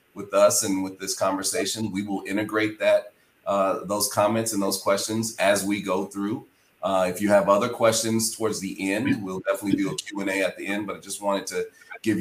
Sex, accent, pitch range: male, American, 95-110 Hz